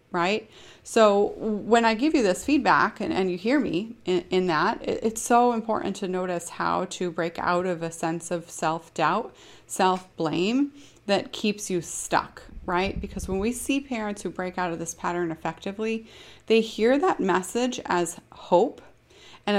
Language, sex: English, female